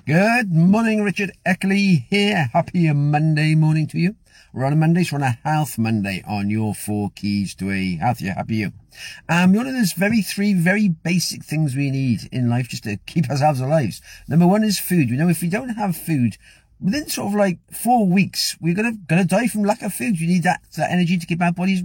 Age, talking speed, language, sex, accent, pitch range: 50-69, 230 wpm, English, male, British, 120-185 Hz